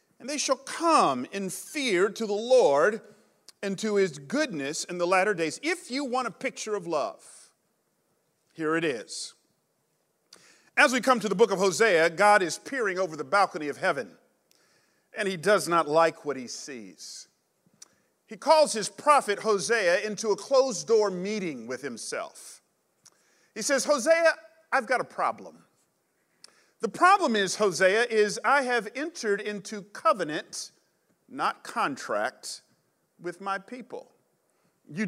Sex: male